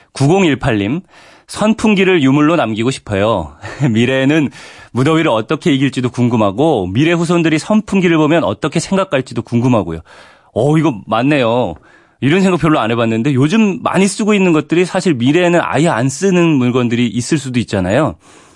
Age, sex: 30-49, male